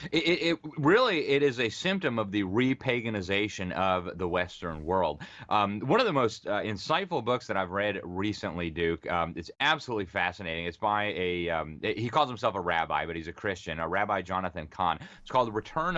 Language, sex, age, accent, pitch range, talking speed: English, male, 30-49, American, 90-110 Hz, 205 wpm